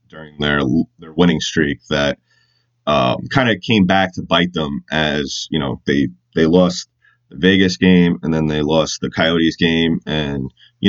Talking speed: 175 wpm